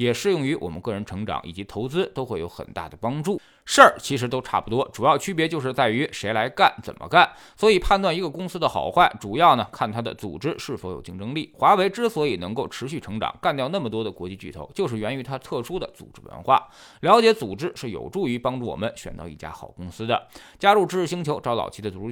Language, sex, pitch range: Chinese, male, 95-145 Hz